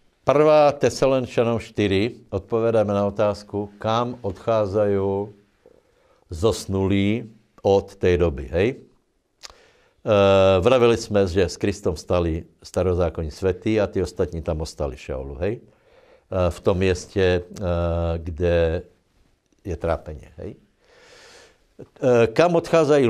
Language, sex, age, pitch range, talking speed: Slovak, male, 60-79, 90-115 Hz, 100 wpm